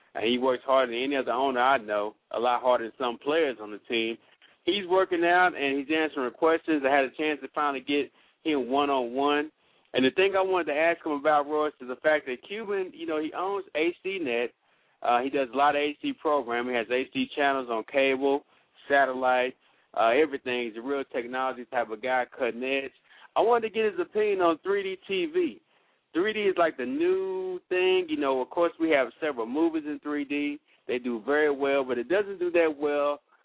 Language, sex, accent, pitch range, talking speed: English, male, American, 125-165 Hz, 205 wpm